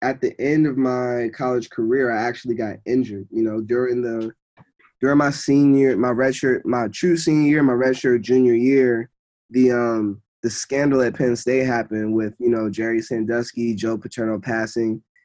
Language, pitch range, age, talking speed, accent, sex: English, 115-130 Hz, 20-39, 175 wpm, American, male